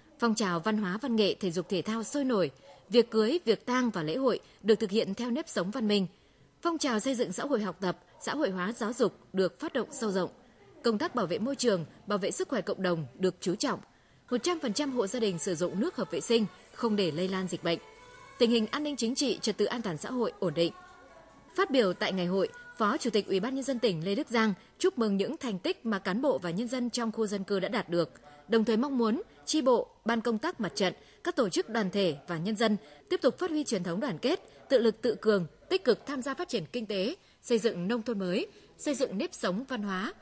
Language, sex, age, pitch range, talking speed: Vietnamese, female, 20-39, 195-260 Hz, 260 wpm